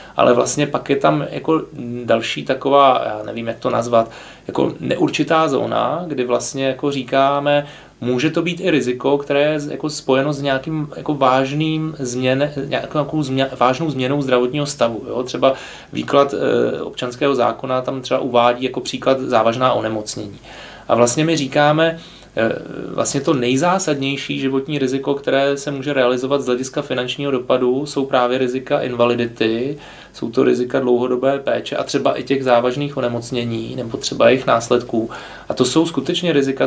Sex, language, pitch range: male, Czech, 120-140 Hz